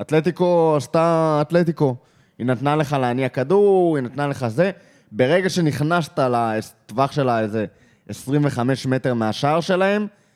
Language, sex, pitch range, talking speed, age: Hebrew, male, 115-155 Hz, 120 wpm, 20-39